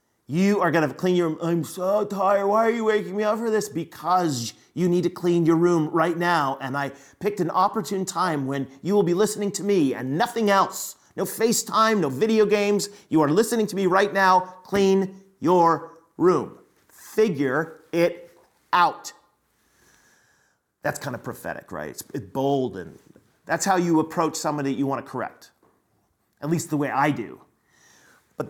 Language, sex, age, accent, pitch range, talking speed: English, male, 40-59, American, 145-200 Hz, 180 wpm